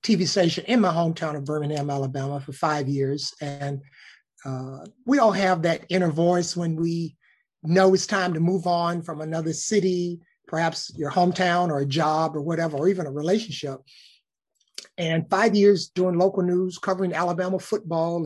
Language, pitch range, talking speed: English, 150-185 Hz, 170 wpm